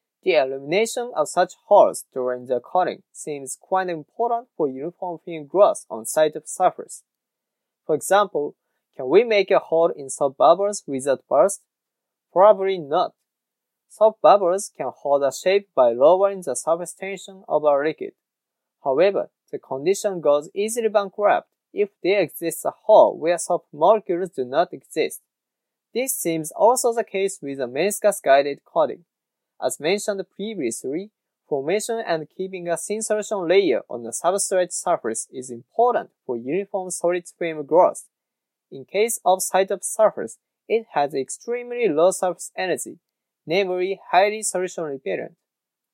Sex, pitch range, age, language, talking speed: male, 155-215 Hz, 20-39, English, 140 wpm